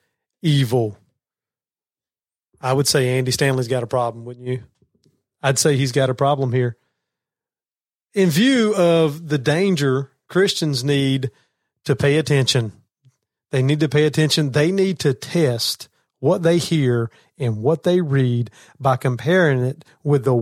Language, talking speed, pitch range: English, 145 wpm, 135-185 Hz